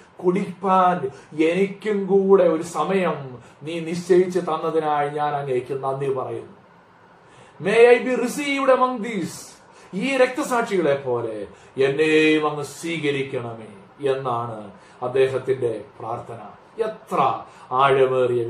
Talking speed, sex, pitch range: 75 wpm, male, 140-195 Hz